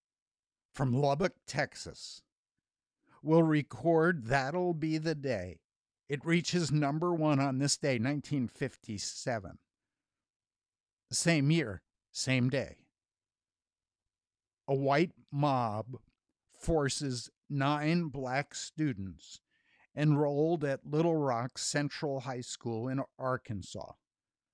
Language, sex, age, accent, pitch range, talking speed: English, male, 60-79, American, 105-150 Hz, 90 wpm